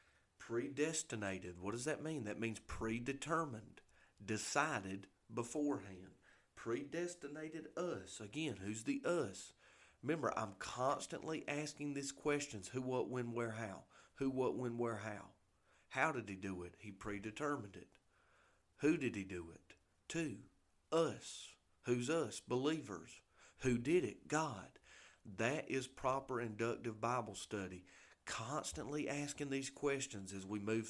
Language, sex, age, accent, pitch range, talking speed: English, male, 40-59, American, 95-140 Hz, 130 wpm